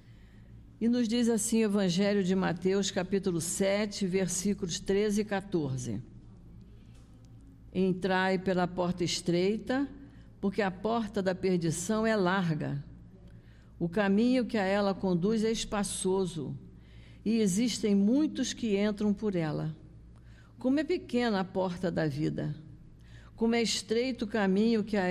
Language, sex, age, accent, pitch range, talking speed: Portuguese, female, 50-69, Brazilian, 150-200 Hz, 130 wpm